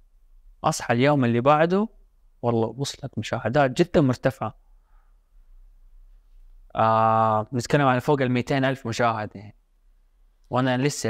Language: Arabic